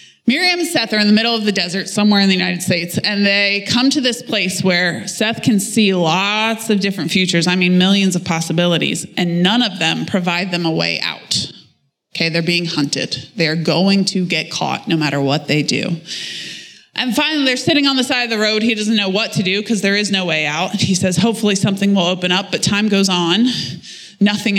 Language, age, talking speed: English, 20-39, 220 wpm